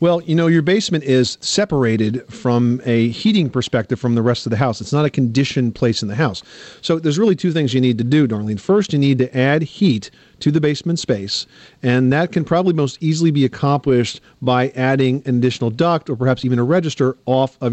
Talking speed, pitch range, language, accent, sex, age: 220 wpm, 125-150 Hz, English, American, male, 40-59